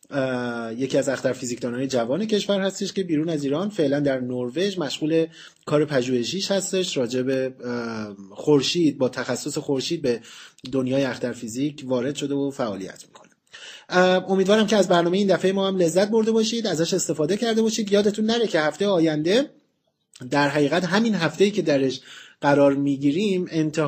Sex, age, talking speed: male, 30-49, 155 wpm